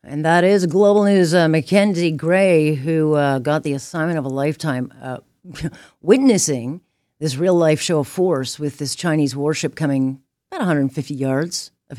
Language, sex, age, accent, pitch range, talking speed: English, female, 40-59, American, 135-175 Hz, 160 wpm